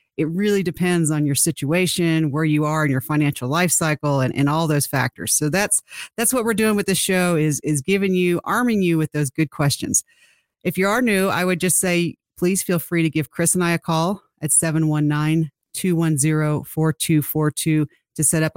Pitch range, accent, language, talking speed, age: 155-180 Hz, American, English, 195 wpm, 40-59